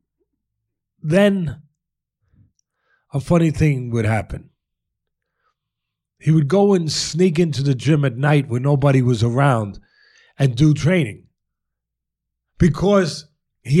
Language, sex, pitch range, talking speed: English, male, 125-155 Hz, 110 wpm